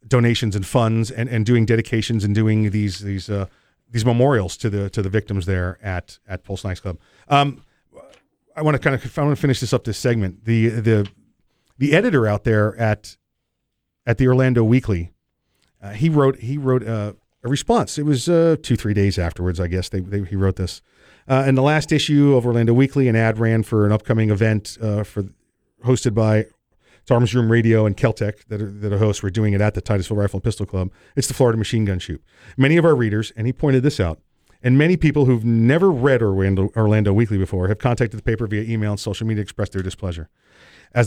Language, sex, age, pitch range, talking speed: English, male, 40-59, 100-125 Hz, 220 wpm